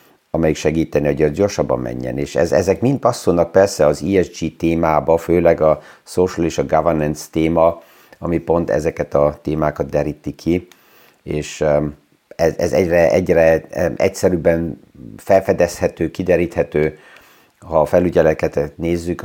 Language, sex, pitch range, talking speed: Hungarian, male, 75-85 Hz, 120 wpm